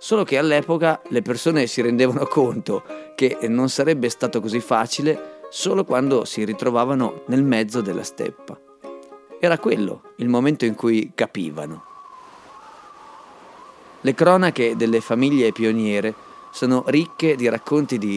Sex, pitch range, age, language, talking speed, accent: male, 105-145 Hz, 30-49, Italian, 130 wpm, native